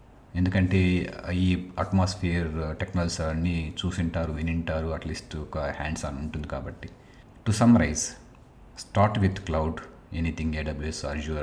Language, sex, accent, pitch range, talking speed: Telugu, male, native, 80-100 Hz, 115 wpm